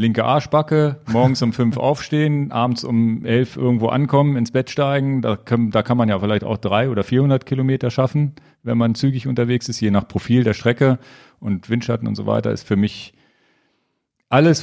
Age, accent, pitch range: 40-59, German, 105-135 Hz